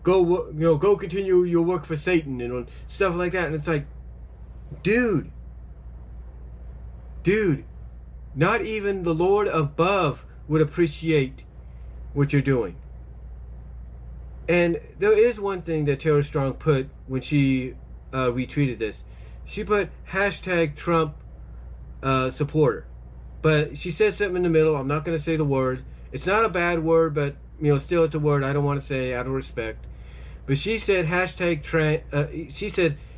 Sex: male